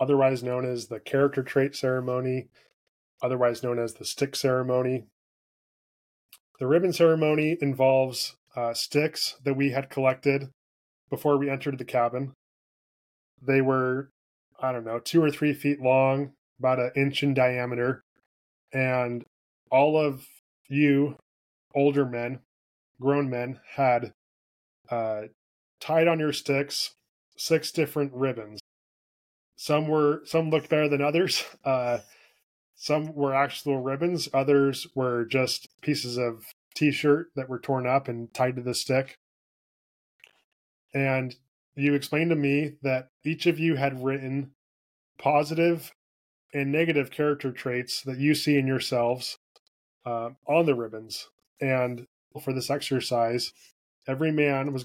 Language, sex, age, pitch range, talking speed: English, male, 10-29, 125-145 Hz, 130 wpm